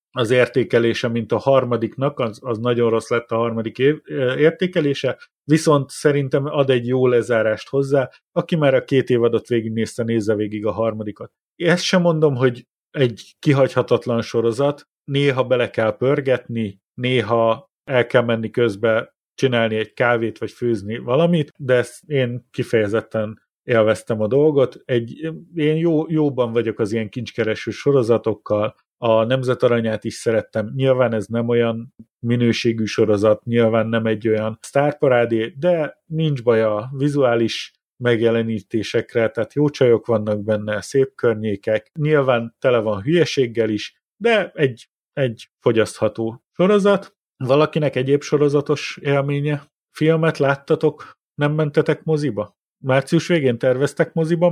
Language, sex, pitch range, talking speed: Hungarian, male, 115-145 Hz, 135 wpm